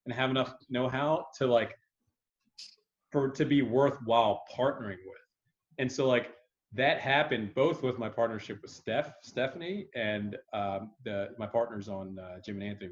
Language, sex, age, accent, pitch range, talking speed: English, male, 30-49, American, 105-140 Hz, 160 wpm